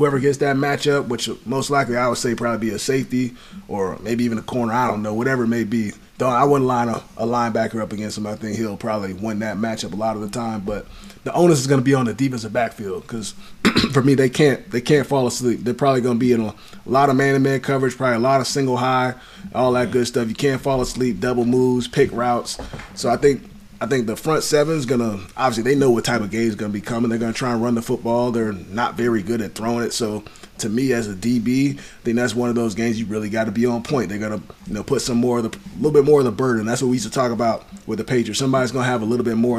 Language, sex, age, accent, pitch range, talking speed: English, male, 30-49, American, 115-135 Hz, 285 wpm